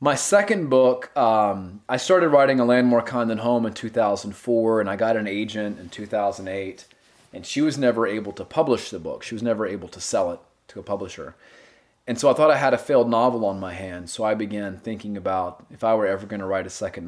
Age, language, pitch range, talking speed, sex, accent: 30-49, English, 95-115 Hz, 235 wpm, male, American